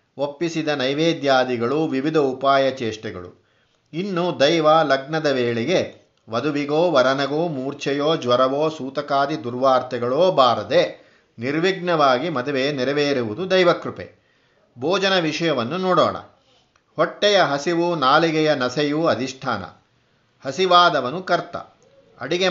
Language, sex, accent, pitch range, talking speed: Kannada, male, native, 130-160 Hz, 85 wpm